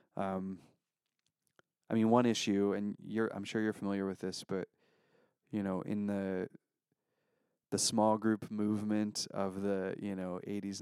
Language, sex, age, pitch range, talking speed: English, male, 20-39, 95-105 Hz, 150 wpm